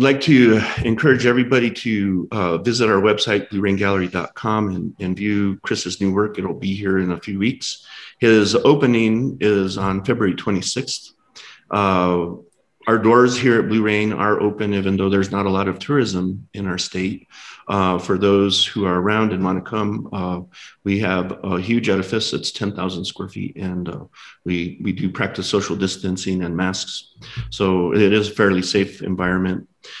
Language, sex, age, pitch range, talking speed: English, male, 40-59, 95-110 Hz, 170 wpm